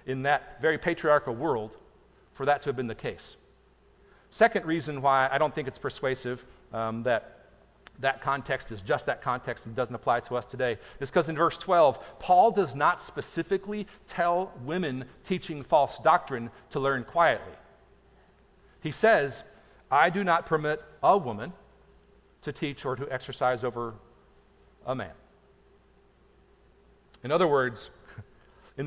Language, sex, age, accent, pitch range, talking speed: English, male, 50-69, American, 125-160 Hz, 150 wpm